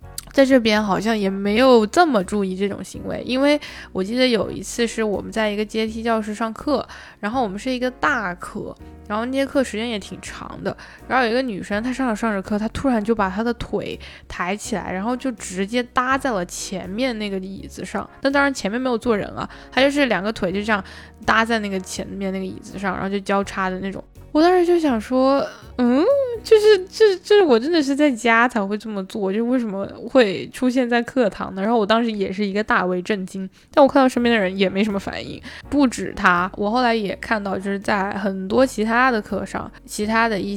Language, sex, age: Chinese, female, 10-29